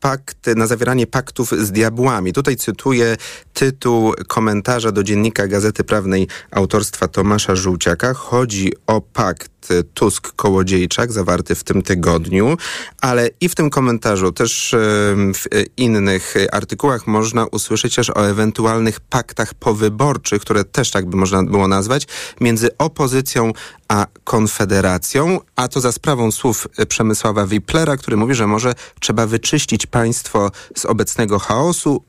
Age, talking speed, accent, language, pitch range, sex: 30-49, 130 wpm, native, Polish, 100-125 Hz, male